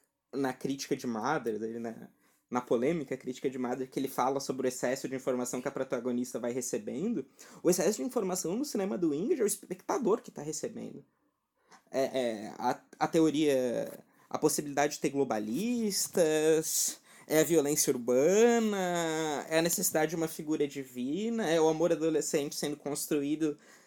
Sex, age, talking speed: male, 20-39, 160 wpm